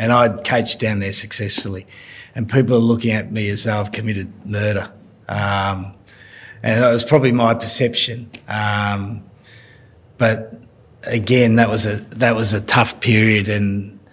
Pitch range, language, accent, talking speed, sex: 105-115 Hz, English, Australian, 155 wpm, male